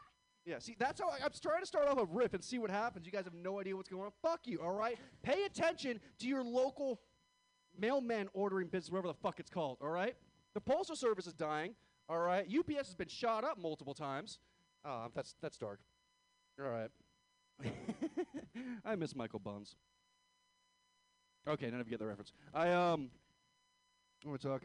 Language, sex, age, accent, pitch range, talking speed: English, male, 30-49, American, 150-250 Hz, 195 wpm